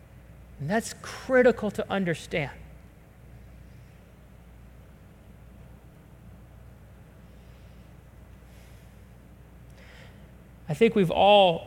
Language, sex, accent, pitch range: English, male, American, 175-235 Hz